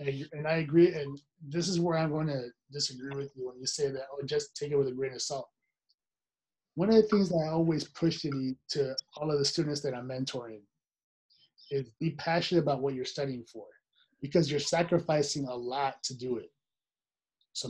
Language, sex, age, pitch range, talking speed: English, male, 30-49, 135-165 Hz, 205 wpm